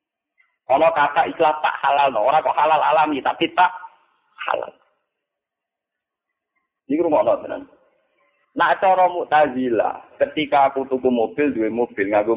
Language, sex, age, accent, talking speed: Indonesian, male, 50-69, native, 125 wpm